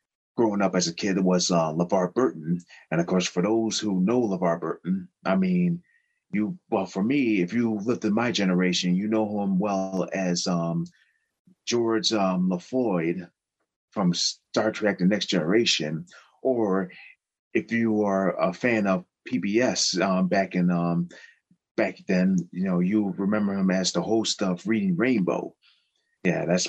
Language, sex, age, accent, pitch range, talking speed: English, male, 30-49, American, 90-110 Hz, 160 wpm